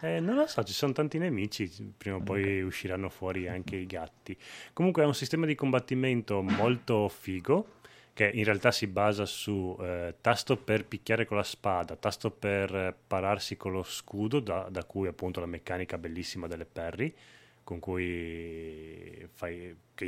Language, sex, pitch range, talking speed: Italian, male, 95-120 Hz, 160 wpm